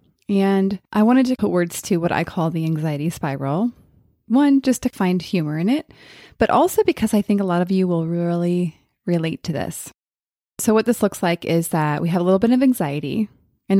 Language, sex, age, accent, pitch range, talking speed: English, female, 20-39, American, 165-235 Hz, 215 wpm